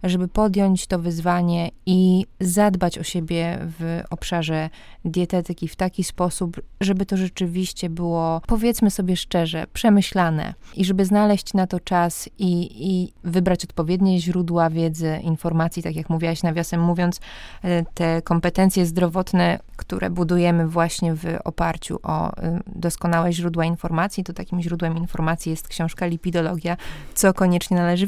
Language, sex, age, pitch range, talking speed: Polish, female, 20-39, 165-190 Hz, 130 wpm